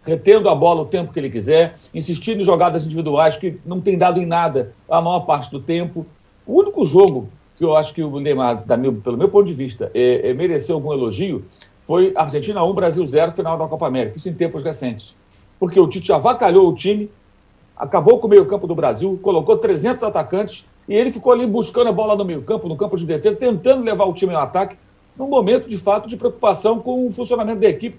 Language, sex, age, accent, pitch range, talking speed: Portuguese, male, 60-79, Brazilian, 155-225 Hz, 215 wpm